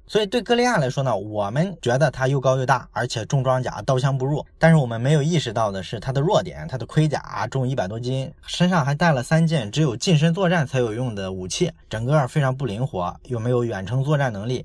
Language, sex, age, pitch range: Chinese, male, 20-39, 120-155 Hz